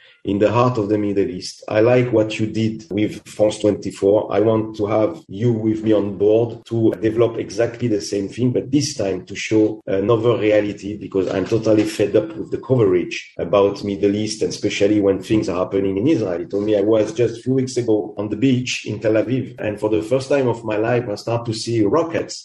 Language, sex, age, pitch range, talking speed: English, male, 40-59, 105-120 Hz, 225 wpm